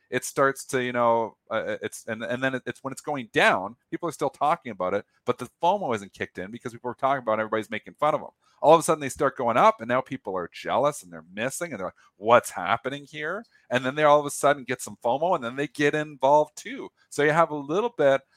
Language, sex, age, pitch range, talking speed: English, male, 40-59, 110-135 Hz, 270 wpm